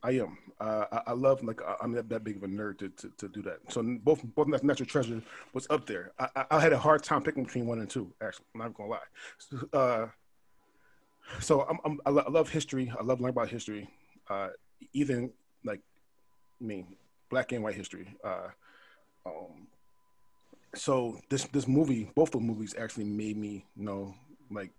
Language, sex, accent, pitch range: English, male, American, 105-135 Hz